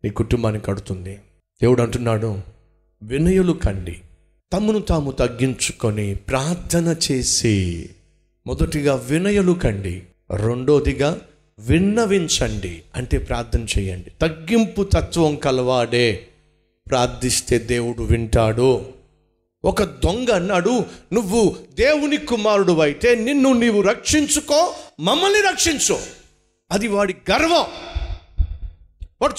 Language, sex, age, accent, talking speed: Telugu, male, 50-69, native, 85 wpm